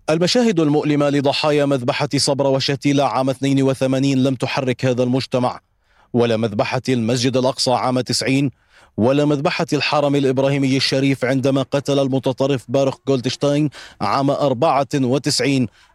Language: Arabic